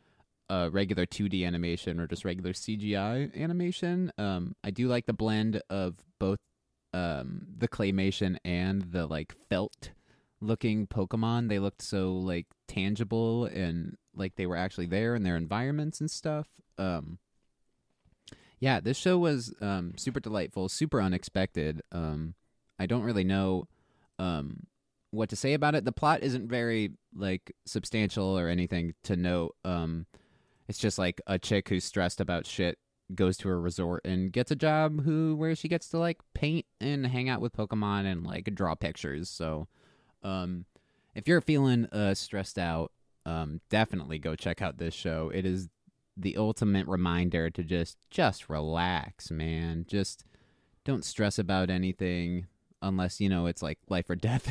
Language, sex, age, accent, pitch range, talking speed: English, male, 20-39, American, 90-115 Hz, 160 wpm